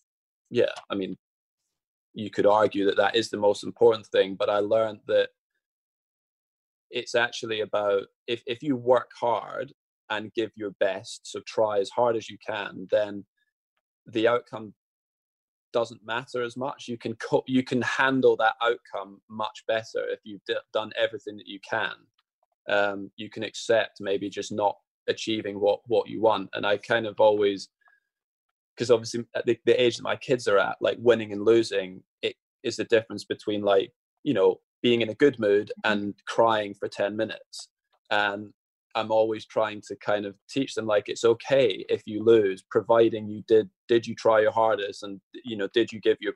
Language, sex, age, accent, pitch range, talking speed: English, male, 20-39, British, 105-130 Hz, 180 wpm